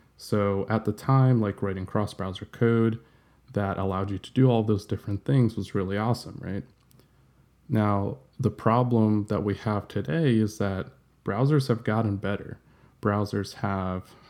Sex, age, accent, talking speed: male, 20-39, American, 150 wpm